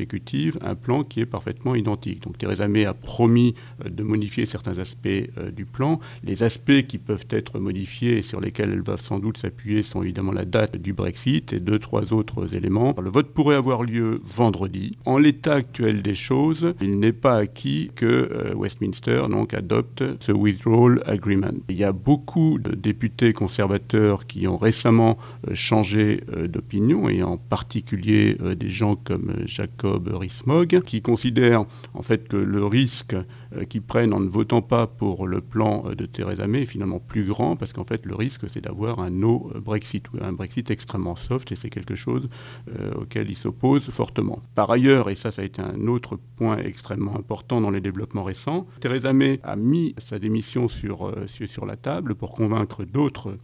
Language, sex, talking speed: French, male, 180 wpm